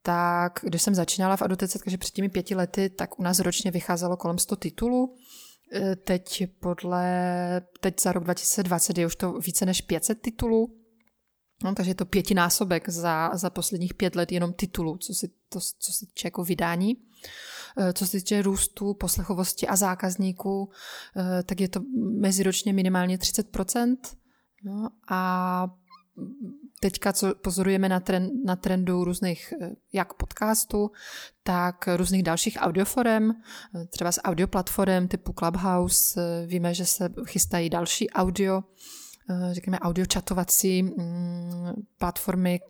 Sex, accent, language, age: female, native, Czech, 20-39